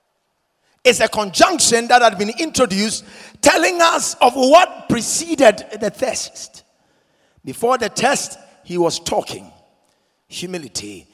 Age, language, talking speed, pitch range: 50-69, English, 115 wpm, 185-280 Hz